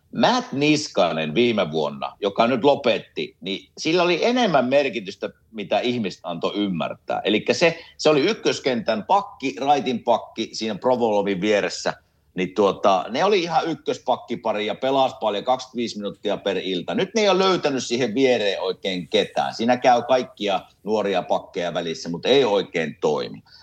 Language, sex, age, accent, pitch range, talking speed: Finnish, male, 50-69, native, 110-175 Hz, 150 wpm